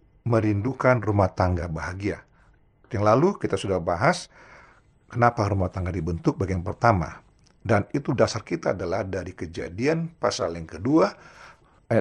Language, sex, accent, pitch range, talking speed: Indonesian, male, native, 105-165 Hz, 130 wpm